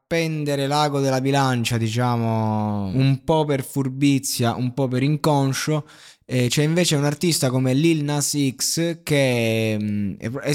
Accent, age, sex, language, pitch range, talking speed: native, 20-39, male, Italian, 115-150 Hz, 135 wpm